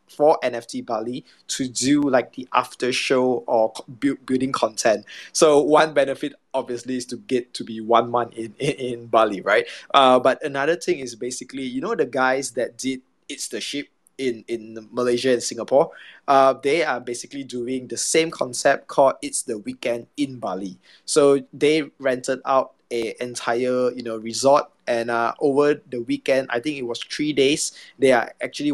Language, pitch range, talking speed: English, 120-145 Hz, 175 wpm